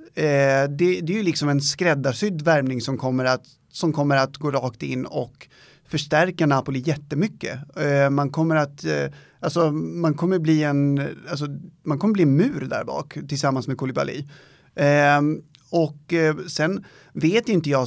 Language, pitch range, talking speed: Swedish, 135-160 Hz, 170 wpm